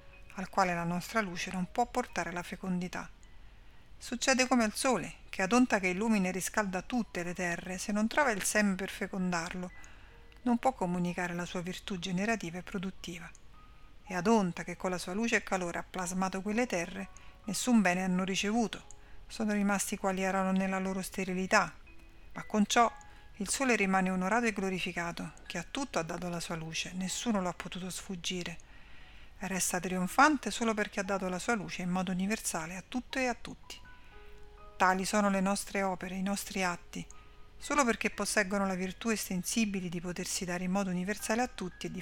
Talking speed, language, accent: 180 wpm, Italian, native